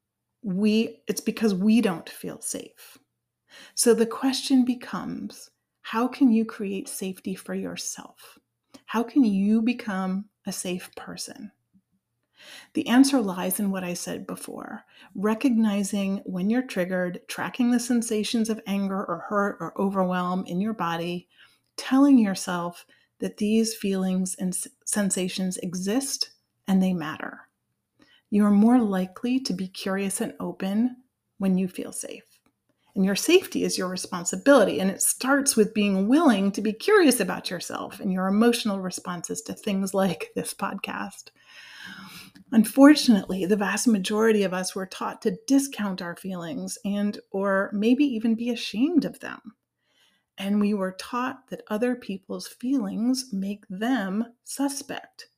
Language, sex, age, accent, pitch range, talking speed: English, female, 30-49, American, 190-245 Hz, 140 wpm